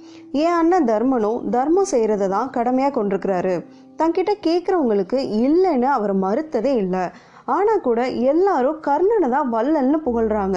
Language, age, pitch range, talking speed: Tamil, 20-39, 205-300 Hz, 120 wpm